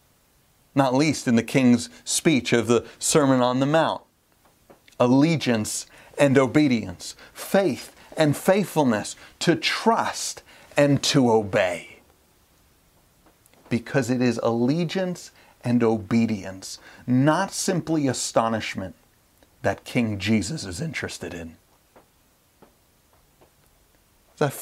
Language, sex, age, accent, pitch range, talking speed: English, male, 40-59, American, 90-135 Hz, 95 wpm